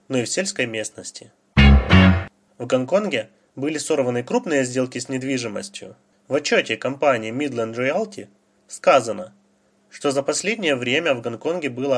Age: 20-39